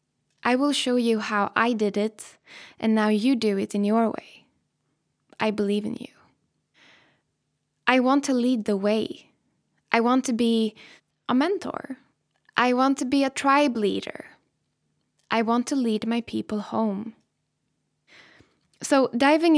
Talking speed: 145 wpm